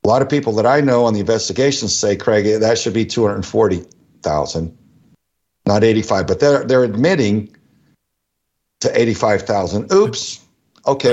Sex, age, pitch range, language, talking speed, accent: male, 60-79, 105-130 Hz, English, 140 wpm, American